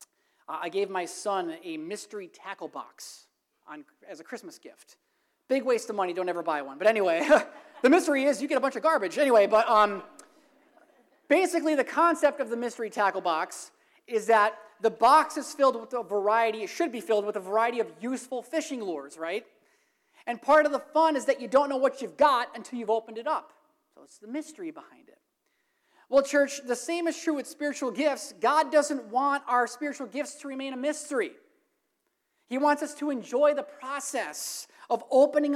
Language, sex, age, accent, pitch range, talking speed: English, male, 30-49, American, 235-320 Hz, 195 wpm